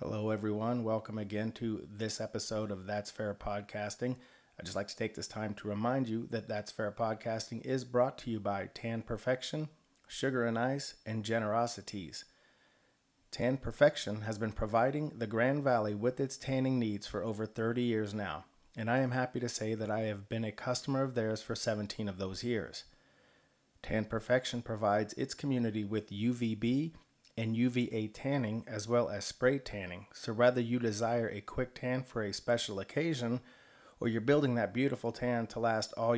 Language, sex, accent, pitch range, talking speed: English, male, American, 110-125 Hz, 180 wpm